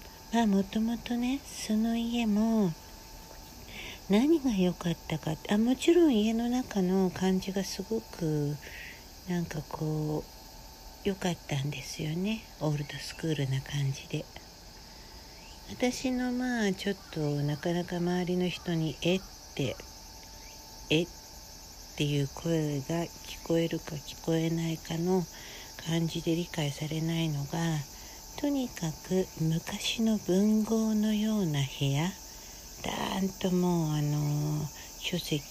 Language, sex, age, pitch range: Japanese, female, 60-79, 150-200 Hz